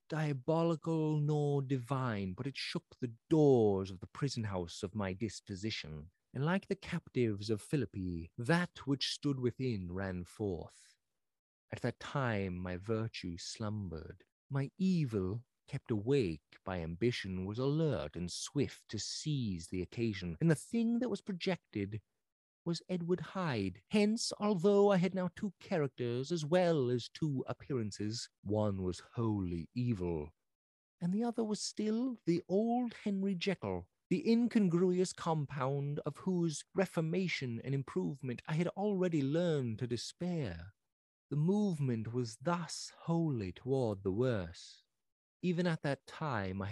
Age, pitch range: 30-49, 105-170 Hz